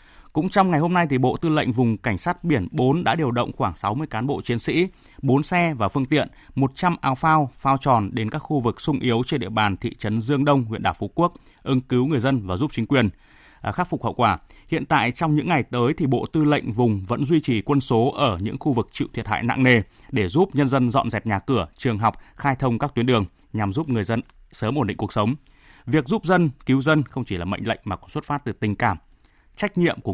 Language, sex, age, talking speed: Vietnamese, male, 20-39, 265 wpm